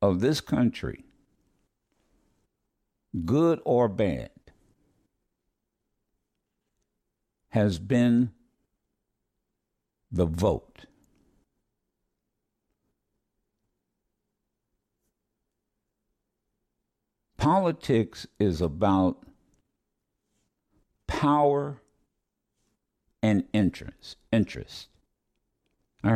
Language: English